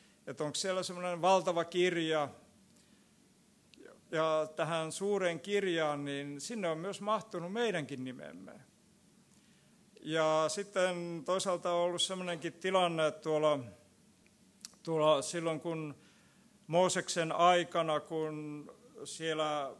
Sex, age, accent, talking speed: male, 50-69, native, 100 wpm